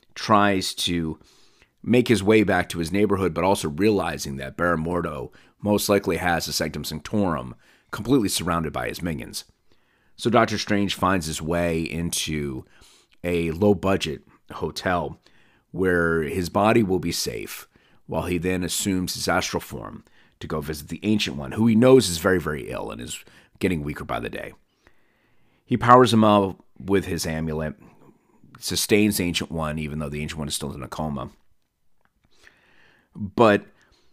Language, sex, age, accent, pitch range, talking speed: English, male, 30-49, American, 80-100 Hz, 160 wpm